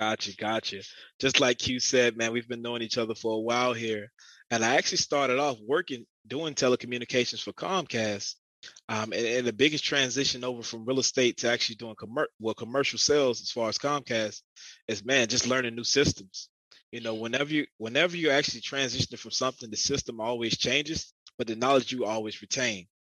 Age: 20-39